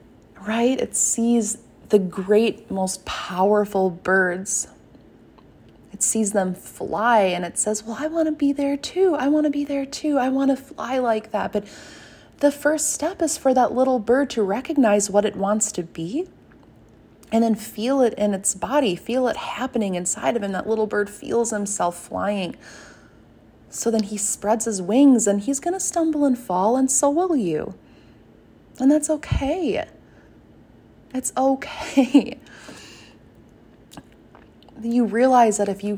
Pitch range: 200-280 Hz